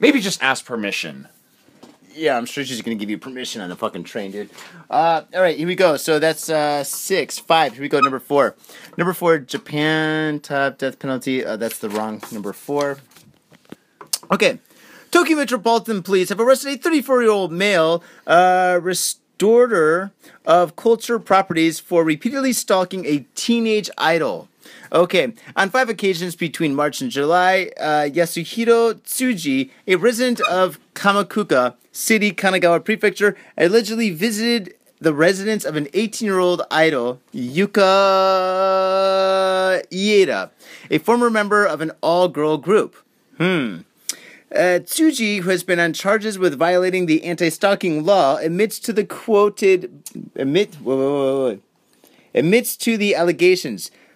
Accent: American